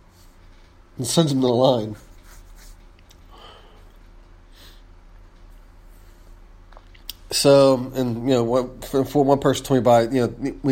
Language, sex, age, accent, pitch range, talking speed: English, male, 30-49, American, 90-135 Hz, 125 wpm